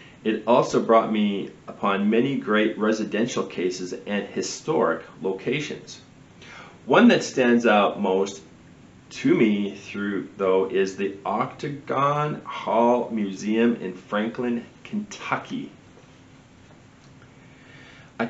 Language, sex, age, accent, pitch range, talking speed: English, male, 40-59, American, 95-125 Hz, 100 wpm